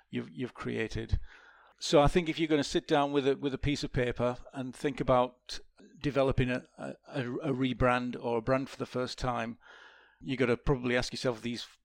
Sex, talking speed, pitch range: male, 210 wpm, 125-145 Hz